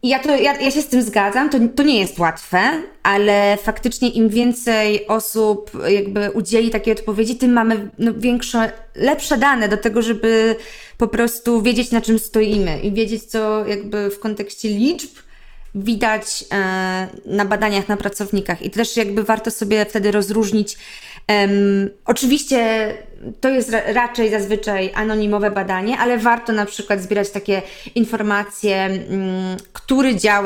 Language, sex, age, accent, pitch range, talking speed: Polish, female, 20-39, native, 205-230 Hz, 150 wpm